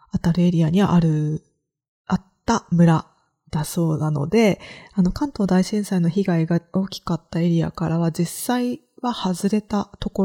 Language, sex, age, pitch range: Japanese, female, 20-39, 165-215 Hz